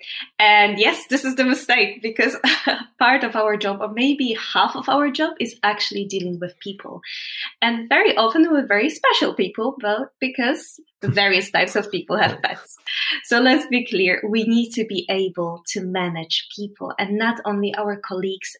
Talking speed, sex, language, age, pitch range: 175 wpm, female, English, 20-39, 195-245 Hz